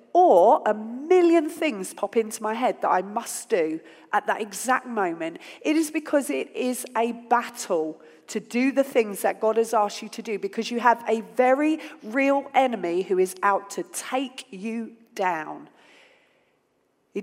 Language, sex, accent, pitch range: English, female, British, 190-260 Hz